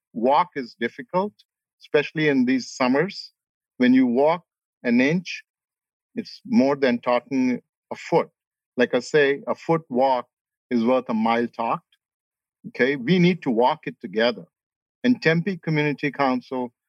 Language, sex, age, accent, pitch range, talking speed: English, male, 50-69, Indian, 125-170 Hz, 140 wpm